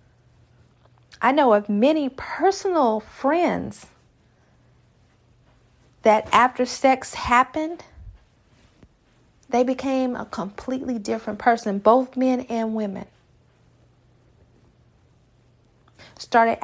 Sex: female